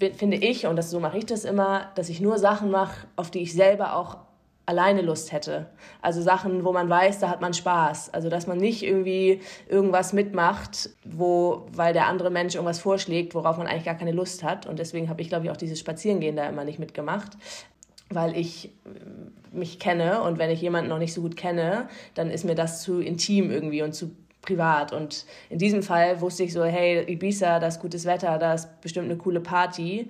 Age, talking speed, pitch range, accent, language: 20-39, 205 wpm, 165-200 Hz, German, German